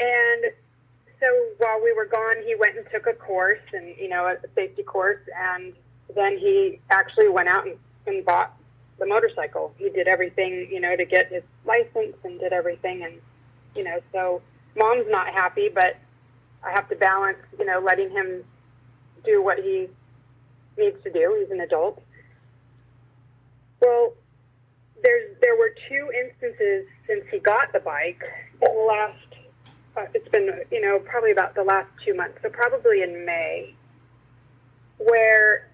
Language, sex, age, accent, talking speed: English, female, 30-49, American, 160 wpm